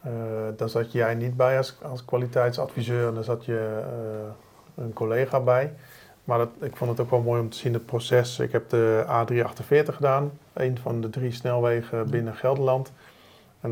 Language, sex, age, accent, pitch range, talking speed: Dutch, male, 40-59, Dutch, 115-130 Hz, 190 wpm